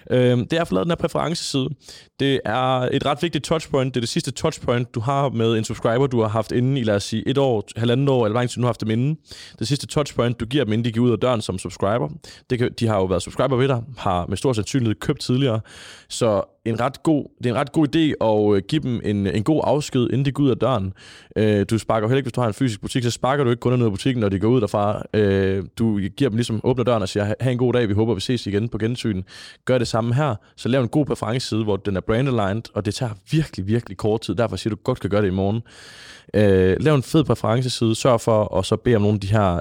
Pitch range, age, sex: 100-130 Hz, 20-39, male